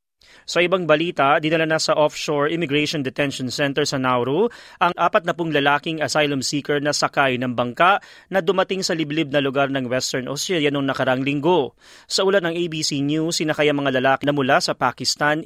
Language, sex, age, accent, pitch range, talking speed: Filipino, male, 30-49, native, 145-170 Hz, 180 wpm